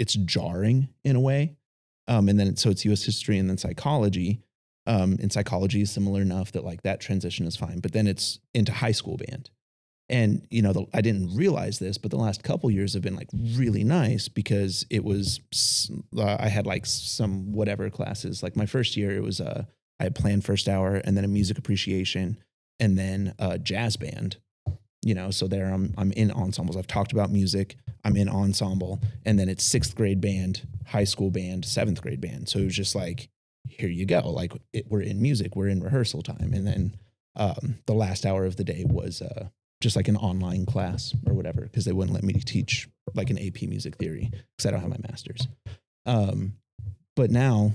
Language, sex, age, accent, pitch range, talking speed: English, male, 30-49, American, 95-115 Hz, 210 wpm